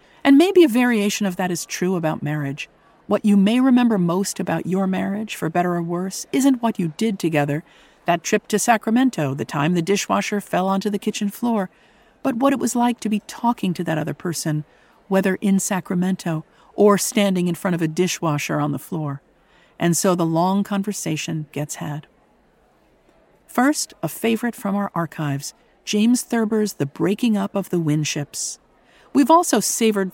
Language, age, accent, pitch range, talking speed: English, 50-69, American, 165-215 Hz, 175 wpm